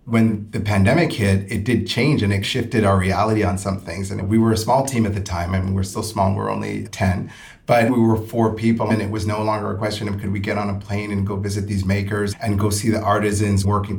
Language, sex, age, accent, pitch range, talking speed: English, male, 30-49, American, 100-110 Hz, 265 wpm